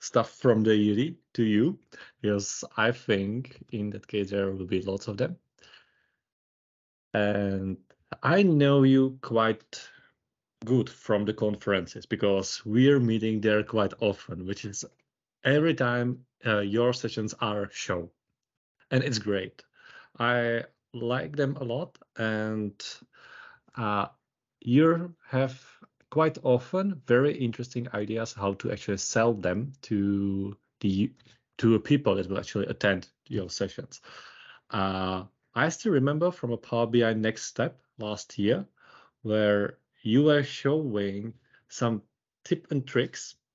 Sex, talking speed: male, 130 wpm